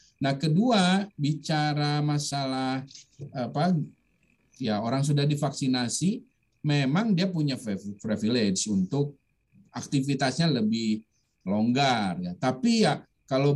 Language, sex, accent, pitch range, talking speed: Indonesian, male, native, 125-180 Hz, 95 wpm